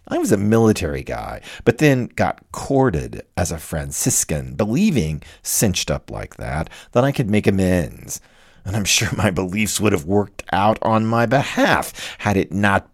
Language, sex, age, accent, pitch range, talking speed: English, male, 50-69, American, 90-130 Hz, 170 wpm